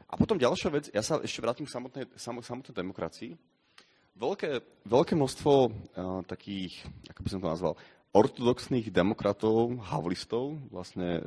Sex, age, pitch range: male, 30-49, 95-125 Hz